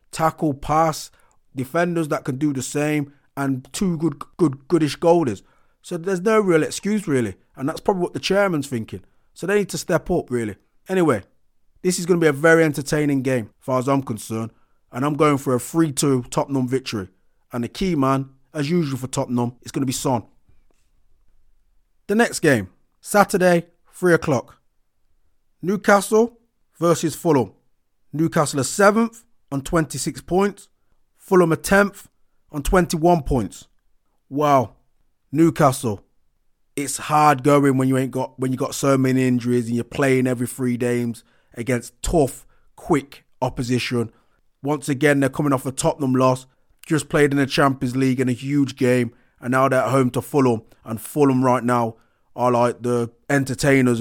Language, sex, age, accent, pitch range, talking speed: English, male, 30-49, British, 125-160 Hz, 165 wpm